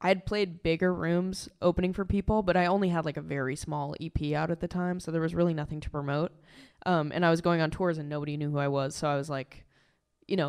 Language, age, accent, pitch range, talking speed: English, 20-39, American, 150-175 Hz, 270 wpm